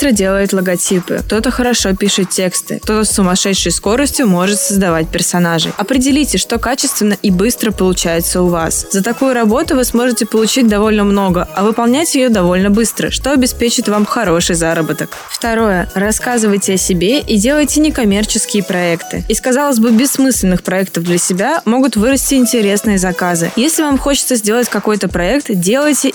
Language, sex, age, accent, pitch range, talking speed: Russian, female, 20-39, native, 190-245 Hz, 150 wpm